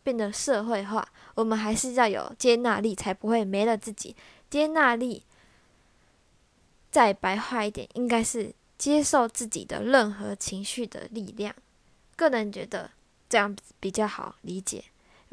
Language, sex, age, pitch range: Chinese, female, 10-29, 210-255 Hz